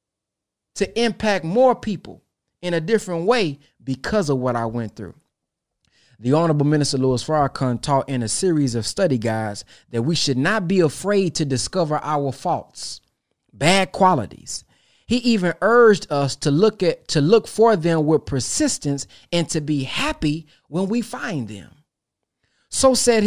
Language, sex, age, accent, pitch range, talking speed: English, male, 20-39, American, 130-180 Hz, 150 wpm